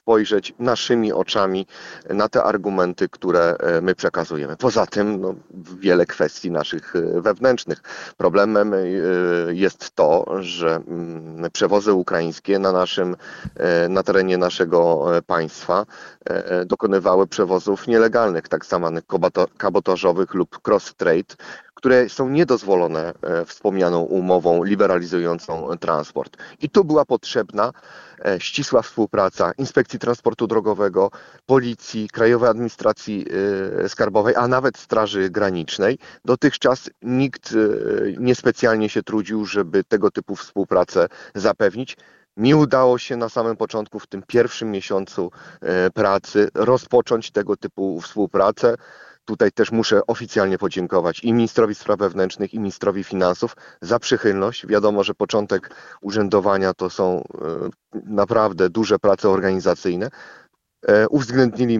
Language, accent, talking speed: Polish, native, 105 wpm